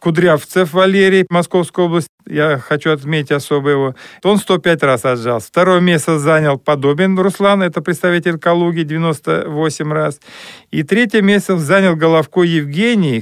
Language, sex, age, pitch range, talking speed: Russian, male, 50-69, 140-180 Hz, 130 wpm